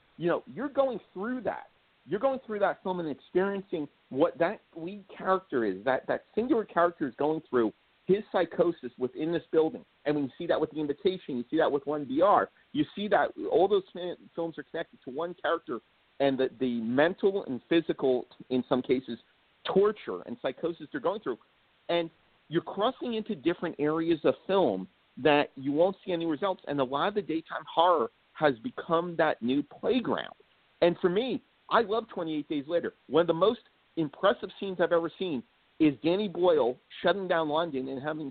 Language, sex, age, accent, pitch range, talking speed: English, male, 50-69, American, 150-205 Hz, 185 wpm